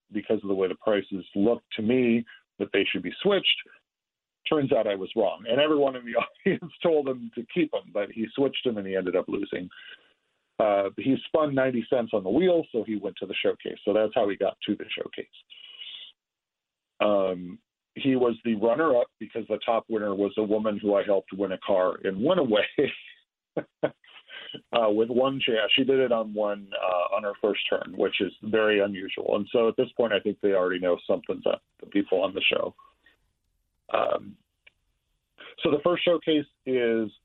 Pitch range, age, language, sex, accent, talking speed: 100-135 Hz, 50-69, English, male, American, 195 wpm